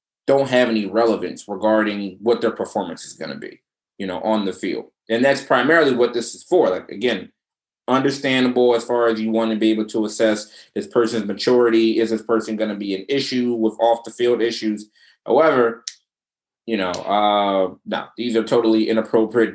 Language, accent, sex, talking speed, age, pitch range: English, American, male, 190 wpm, 20-39, 105-120 Hz